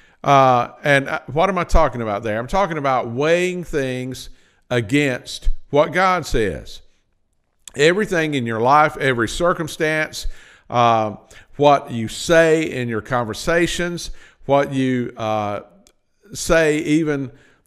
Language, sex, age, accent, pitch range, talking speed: English, male, 50-69, American, 125-170 Hz, 115 wpm